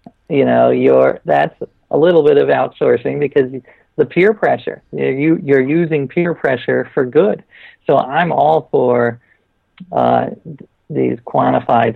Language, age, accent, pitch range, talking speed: English, 50-69, American, 120-160 Hz, 135 wpm